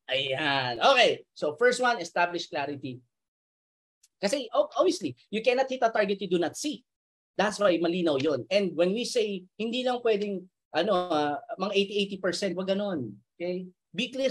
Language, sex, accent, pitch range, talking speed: Filipino, male, native, 145-215 Hz, 160 wpm